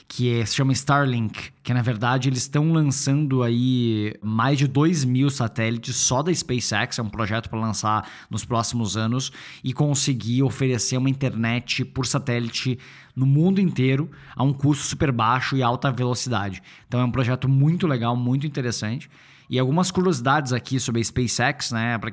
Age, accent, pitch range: 20-39, Brazilian, 115-140 Hz